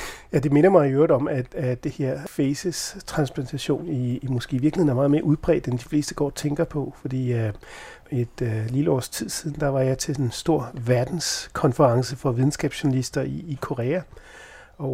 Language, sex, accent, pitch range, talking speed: Danish, male, native, 130-155 Hz, 195 wpm